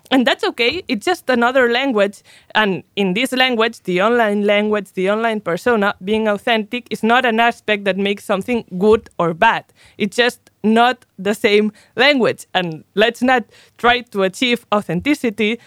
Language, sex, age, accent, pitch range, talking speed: English, female, 20-39, Spanish, 185-240 Hz, 160 wpm